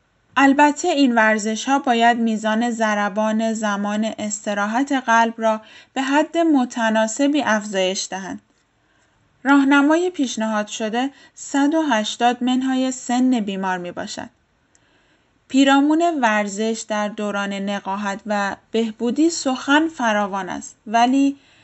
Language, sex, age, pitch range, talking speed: Persian, female, 10-29, 205-275 Hz, 105 wpm